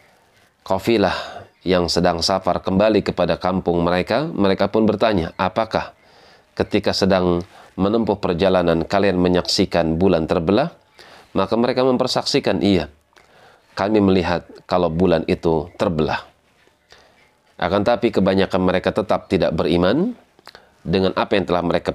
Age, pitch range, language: 30-49, 90-110 Hz, Indonesian